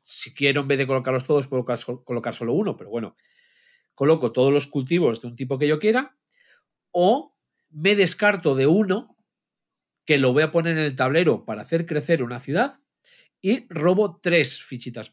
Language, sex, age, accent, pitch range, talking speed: Spanish, male, 40-59, Spanish, 130-185 Hz, 180 wpm